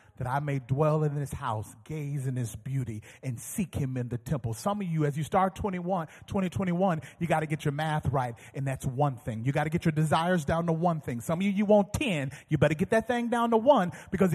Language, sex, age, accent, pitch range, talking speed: English, male, 30-49, American, 130-180 Hz, 255 wpm